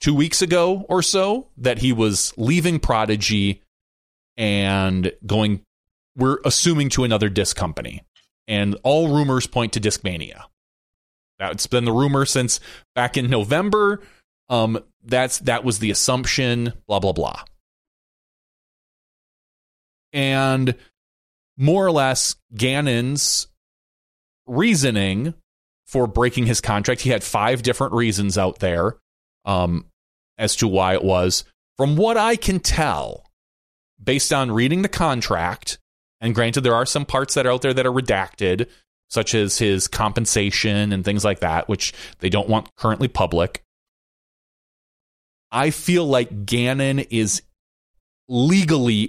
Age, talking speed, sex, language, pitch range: 30-49, 130 wpm, male, English, 100-135 Hz